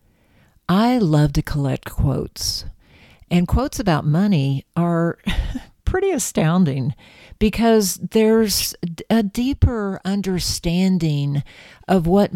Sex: female